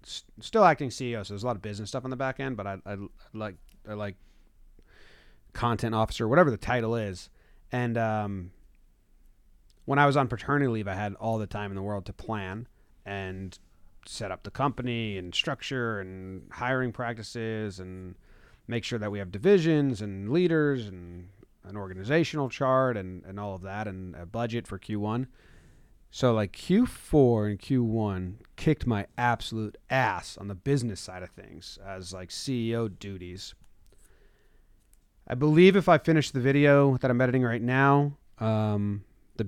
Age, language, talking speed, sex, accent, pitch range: 30-49, English, 165 wpm, male, American, 100-130 Hz